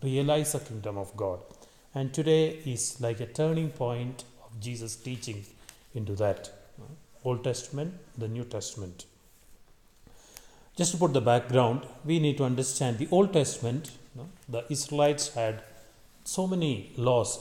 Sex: male